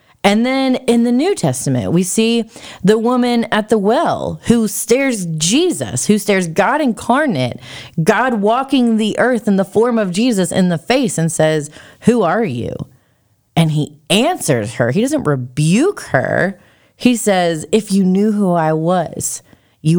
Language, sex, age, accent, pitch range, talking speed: English, female, 30-49, American, 155-230 Hz, 160 wpm